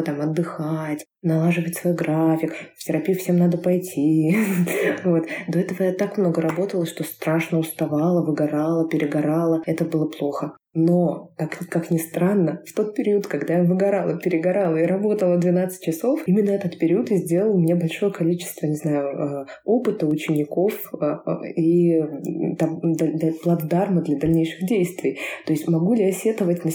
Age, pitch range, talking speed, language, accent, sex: 20-39, 160-200 Hz, 140 wpm, Russian, native, female